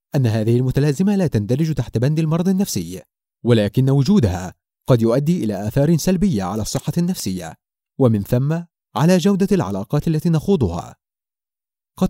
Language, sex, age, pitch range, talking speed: Arabic, male, 30-49, 120-175 Hz, 135 wpm